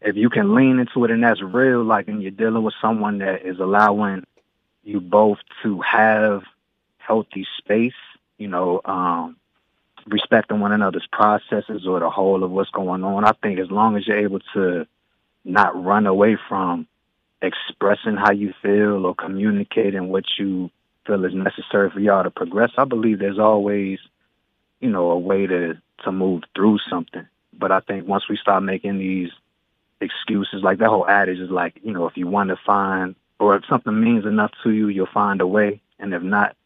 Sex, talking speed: male, 185 wpm